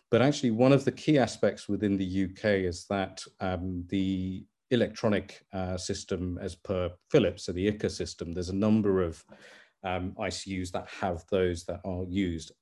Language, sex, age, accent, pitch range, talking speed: English, male, 40-59, British, 95-115 Hz, 170 wpm